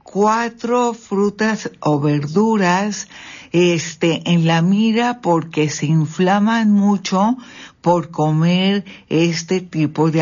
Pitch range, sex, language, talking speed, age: 160-215 Hz, female, Spanish, 95 wpm, 60-79